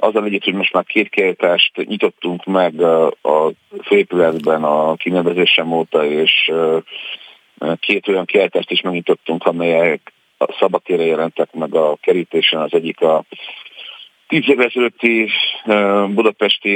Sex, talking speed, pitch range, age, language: male, 135 wpm, 85-105 Hz, 50-69, Hungarian